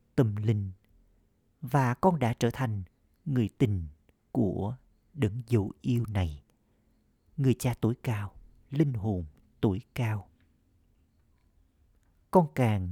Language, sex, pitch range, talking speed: Vietnamese, male, 95-125 Hz, 100 wpm